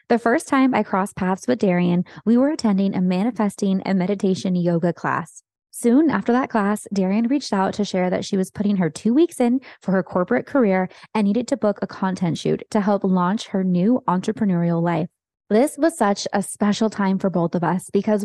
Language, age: English, 20-39